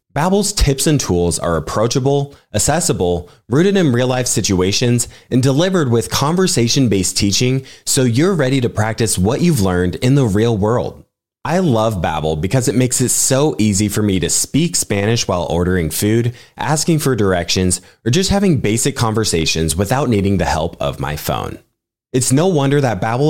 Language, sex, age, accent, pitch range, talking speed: English, male, 20-39, American, 95-140 Hz, 165 wpm